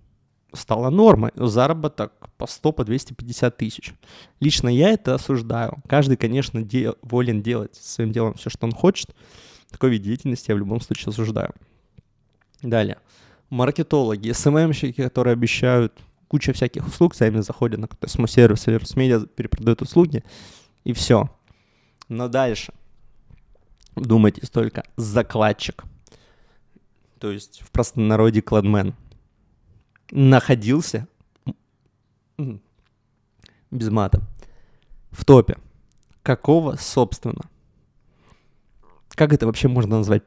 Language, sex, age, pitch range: Russian, male, 20-39, 110-130 Hz